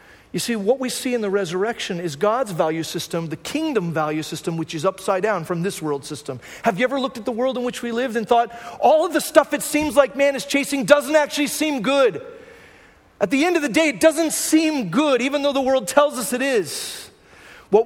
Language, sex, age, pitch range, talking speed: English, male, 40-59, 195-285 Hz, 235 wpm